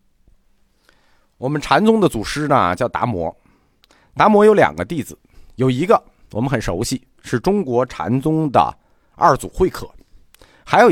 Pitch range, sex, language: 100-160 Hz, male, Chinese